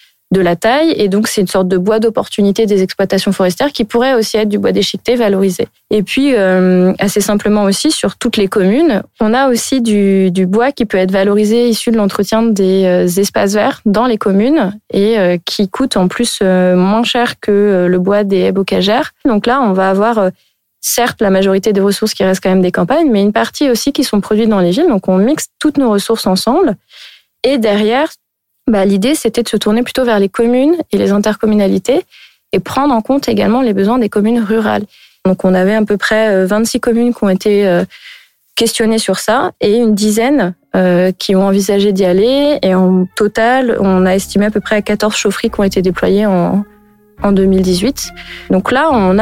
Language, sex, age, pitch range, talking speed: French, female, 20-39, 195-235 Hz, 195 wpm